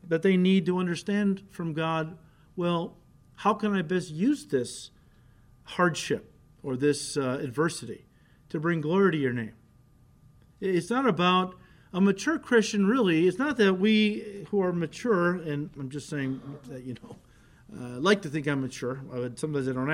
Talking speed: 165 wpm